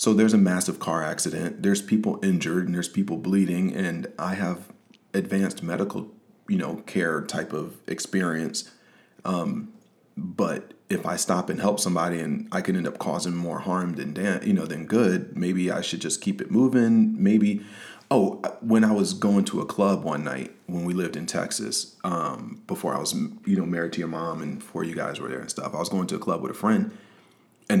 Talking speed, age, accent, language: 205 wpm, 40-59, American, English